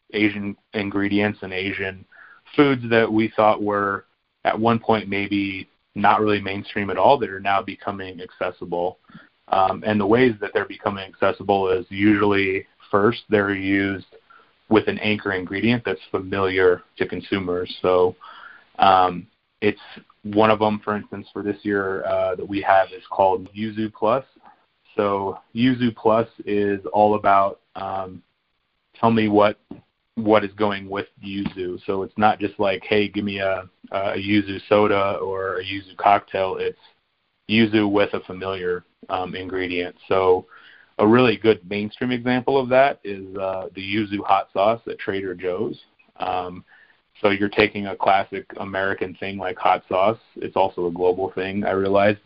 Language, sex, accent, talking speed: English, male, American, 155 wpm